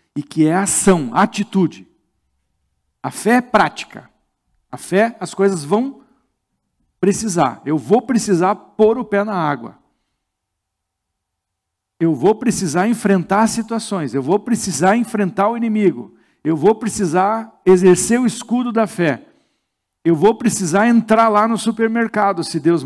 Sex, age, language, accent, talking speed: male, 50-69, Portuguese, Brazilian, 135 wpm